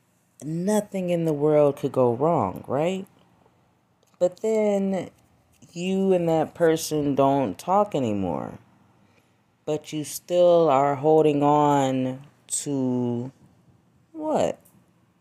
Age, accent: 30-49, American